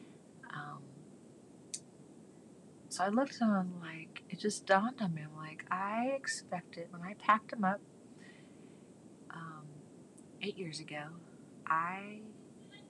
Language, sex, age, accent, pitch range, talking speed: English, female, 30-49, American, 160-200 Hz, 115 wpm